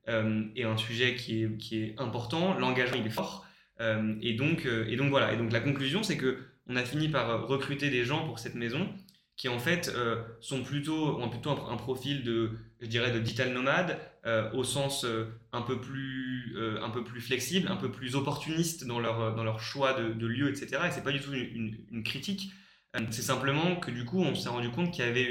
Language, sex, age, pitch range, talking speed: French, male, 20-39, 115-140 Hz, 230 wpm